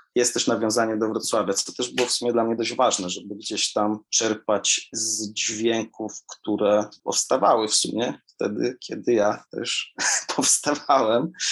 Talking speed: 150 wpm